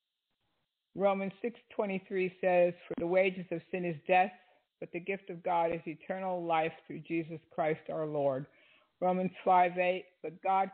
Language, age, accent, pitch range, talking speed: English, 50-69, American, 160-185 Hz, 150 wpm